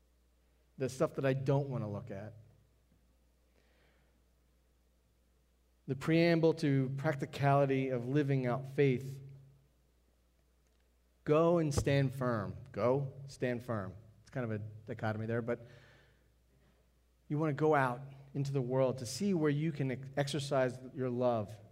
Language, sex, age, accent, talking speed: English, male, 30-49, American, 130 wpm